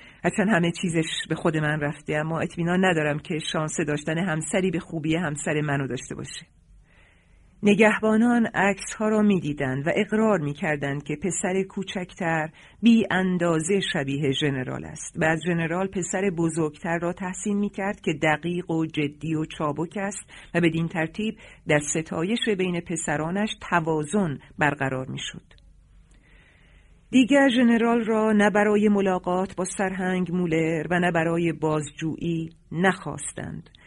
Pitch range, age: 155-190 Hz, 50-69